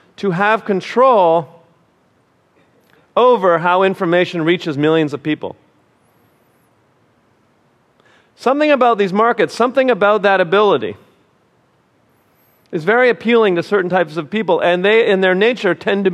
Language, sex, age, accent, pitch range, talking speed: English, male, 40-59, American, 115-185 Hz, 125 wpm